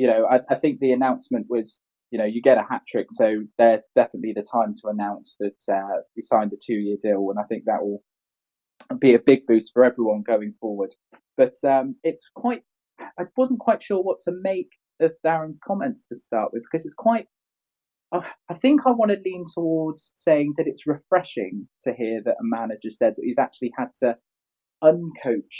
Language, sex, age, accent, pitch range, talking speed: English, male, 20-39, British, 115-180 Hz, 195 wpm